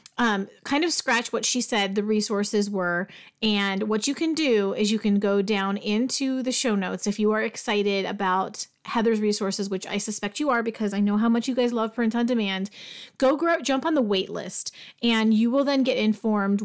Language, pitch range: English, 195-235 Hz